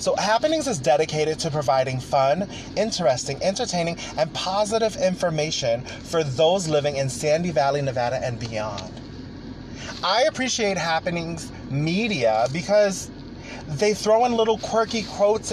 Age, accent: 30-49, American